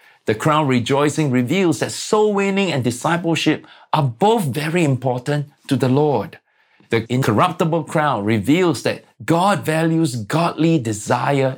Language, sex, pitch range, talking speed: English, male, 115-160 Hz, 130 wpm